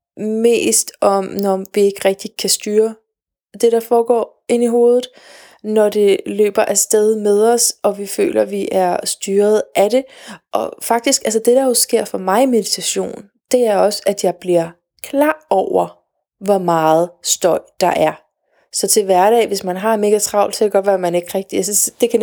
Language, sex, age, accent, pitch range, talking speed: Danish, female, 20-39, native, 190-235 Hz, 195 wpm